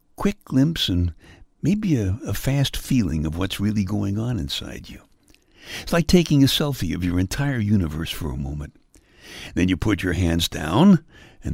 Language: English